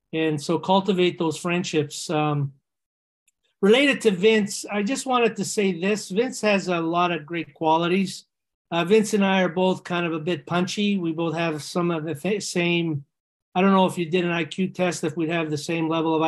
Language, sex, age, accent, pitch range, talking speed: English, male, 40-59, American, 160-195 Hz, 205 wpm